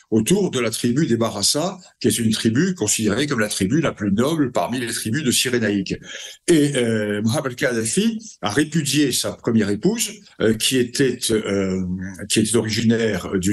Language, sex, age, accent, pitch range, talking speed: French, male, 60-79, French, 115-185 Hz, 175 wpm